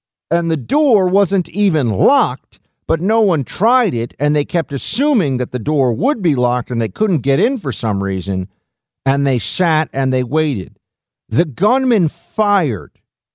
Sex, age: male, 50-69